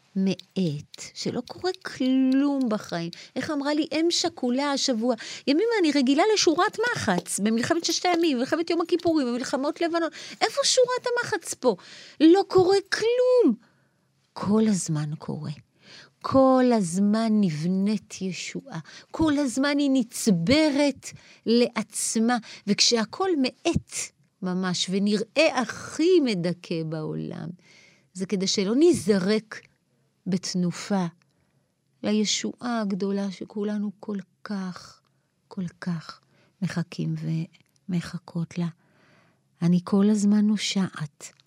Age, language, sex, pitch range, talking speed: 30-49, Hebrew, female, 170-260 Hz, 100 wpm